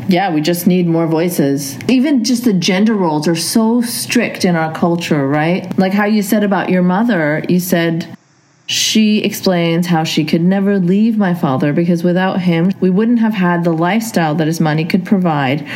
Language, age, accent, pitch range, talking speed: English, 40-59, American, 170-210 Hz, 190 wpm